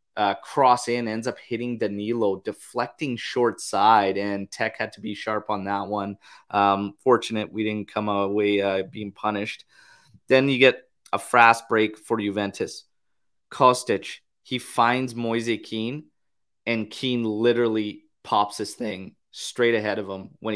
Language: English